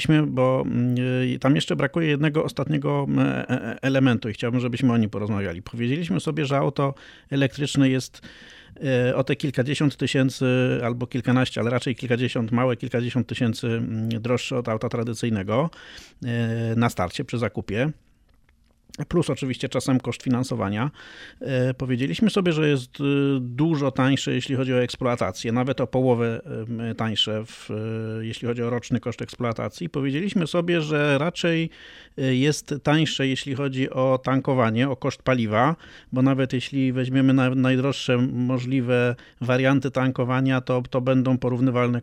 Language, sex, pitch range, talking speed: Polish, male, 125-140 Hz, 125 wpm